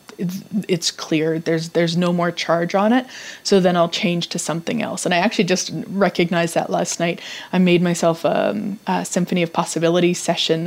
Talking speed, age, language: 185 wpm, 30-49, English